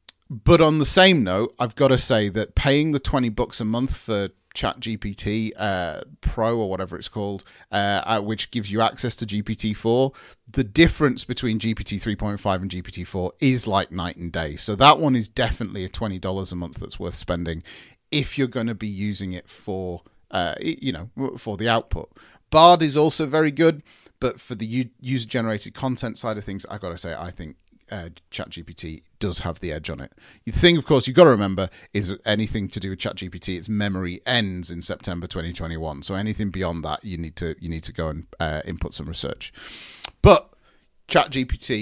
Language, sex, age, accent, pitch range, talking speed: English, male, 30-49, British, 90-130 Hz, 195 wpm